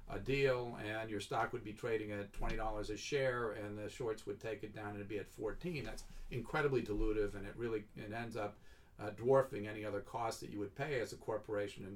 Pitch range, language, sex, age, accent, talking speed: 105-115 Hz, English, male, 50-69, American, 235 wpm